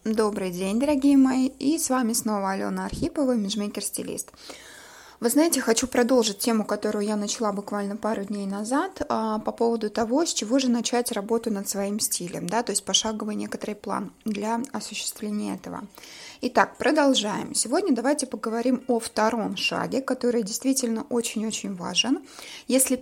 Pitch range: 215-265 Hz